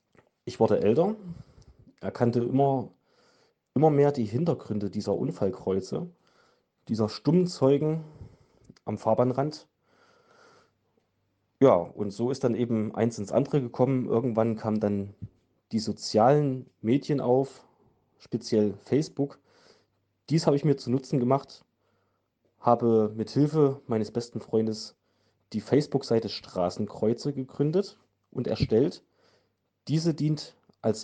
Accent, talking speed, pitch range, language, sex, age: German, 110 wpm, 110-135 Hz, German, male, 30-49